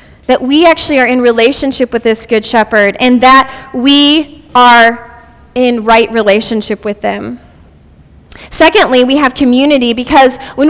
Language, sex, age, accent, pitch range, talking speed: English, female, 20-39, American, 215-285 Hz, 140 wpm